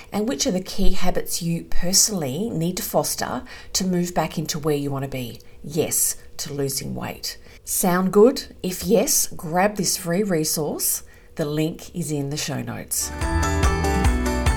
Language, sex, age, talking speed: English, female, 40-59, 160 wpm